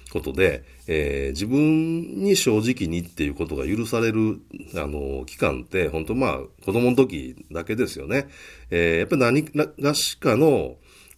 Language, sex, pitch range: Japanese, male, 65-105 Hz